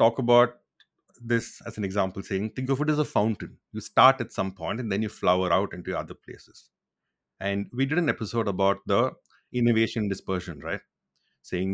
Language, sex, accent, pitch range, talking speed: English, male, Indian, 95-115 Hz, 190 wpm